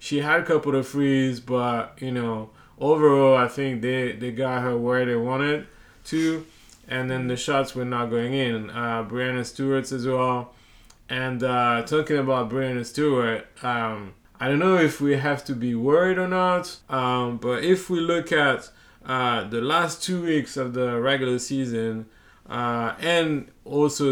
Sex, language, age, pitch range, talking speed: male, English, 30-49, 120-140 Hz, 170 wpm